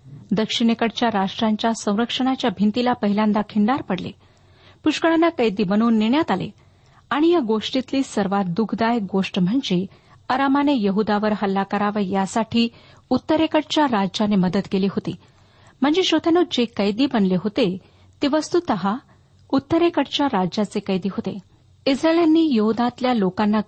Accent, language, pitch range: native, Marathi, 205-270 Hz